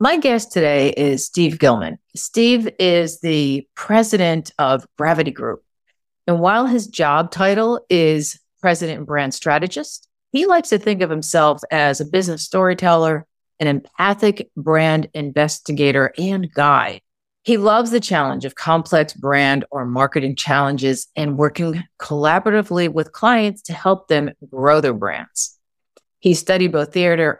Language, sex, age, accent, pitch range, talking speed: English, female, 40-59, American, 145-190 Hz, 140 wpm